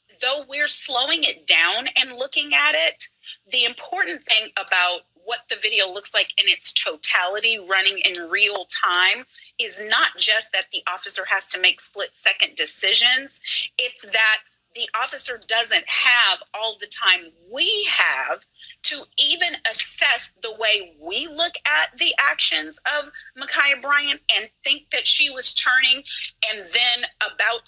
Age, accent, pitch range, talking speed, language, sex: 30-49, American, 230-330 Hz, 150 wpm, English, female